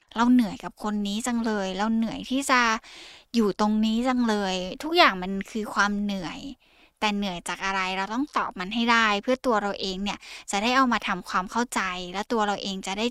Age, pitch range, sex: 10-29, 195-250 Hz, female